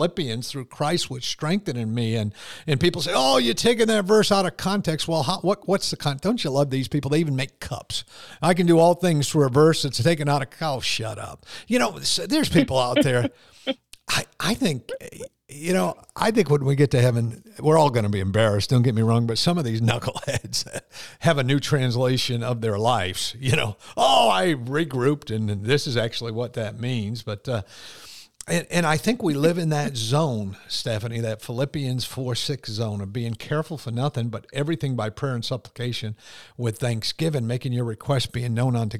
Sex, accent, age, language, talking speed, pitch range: male, American, 50-69, English, 210 wpm, 115-155 Hz